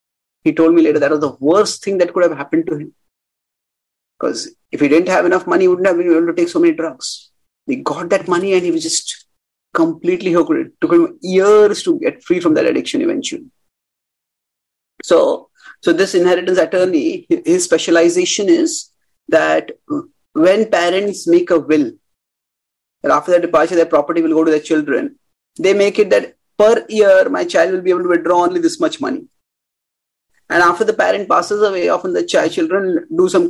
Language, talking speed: English, 190 wpm